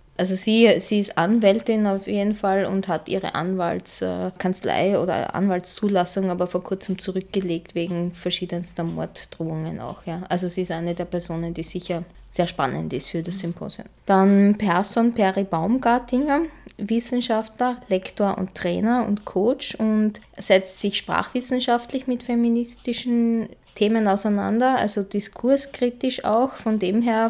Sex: female